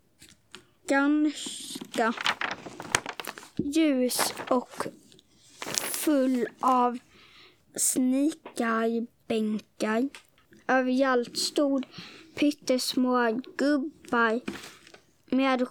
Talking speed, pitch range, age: 45 wpm, 245-285 Hz, 20-39